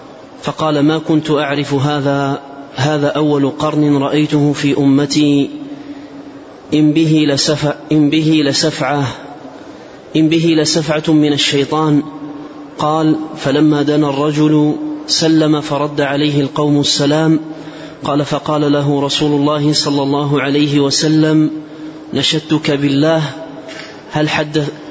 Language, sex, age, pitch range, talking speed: Arabic, male, 30-49, 145-155 Hz, 105 wpm